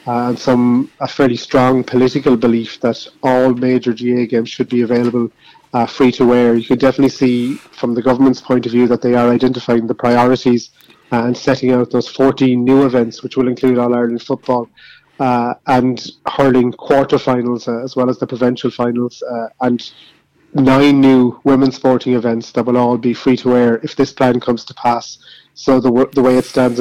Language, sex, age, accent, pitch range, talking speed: English, male, 30-49, Irish, 120-130 Hz, 190 wpm